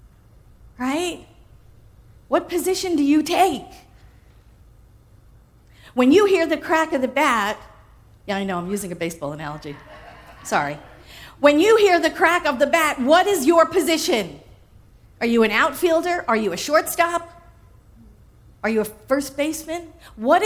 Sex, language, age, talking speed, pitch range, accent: female, English, 50-69, 145 wpm, 205-325 Hz, American